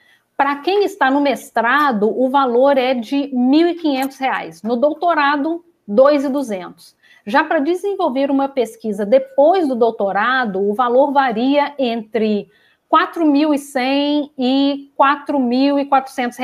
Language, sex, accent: Portuguese, female, Brazilian